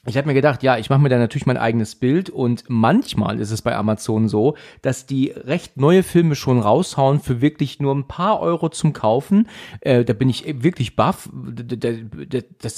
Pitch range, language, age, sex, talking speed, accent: 120-170 Hz, German, 40-59, male, 195 wpm, German